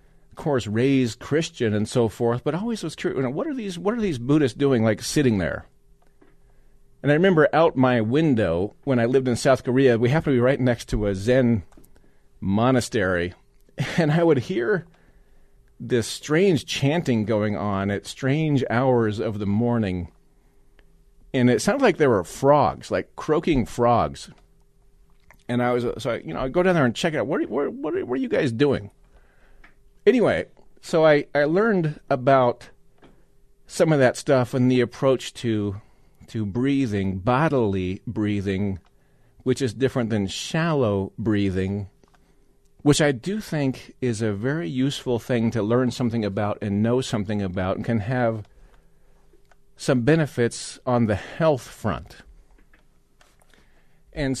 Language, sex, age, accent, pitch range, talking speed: English, male, 40-59, American, 105-140 Hz, 165 wpm